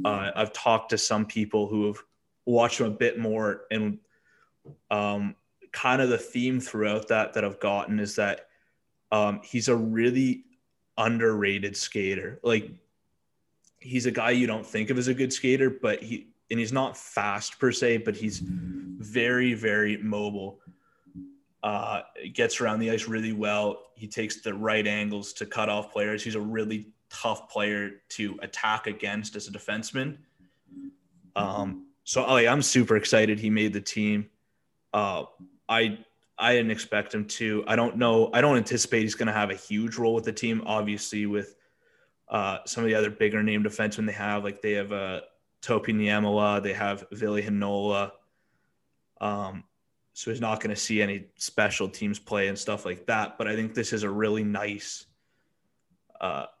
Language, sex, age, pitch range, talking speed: English, male, 20-39, 105-115 Hz, 175 wpm